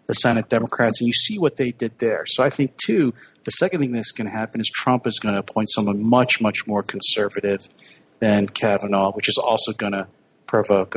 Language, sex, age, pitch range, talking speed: English, male, 40-59, 120-150 Hz, 220 wpm